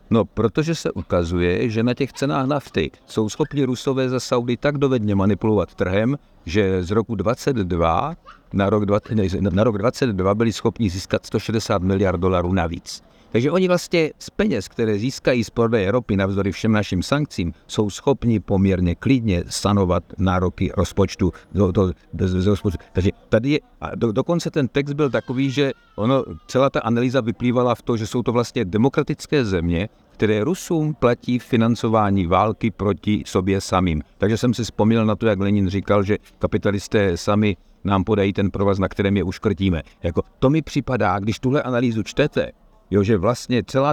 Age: 50-69